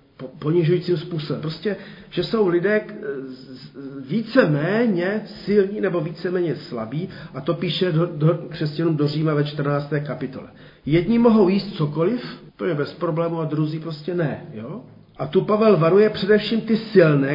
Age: 40-59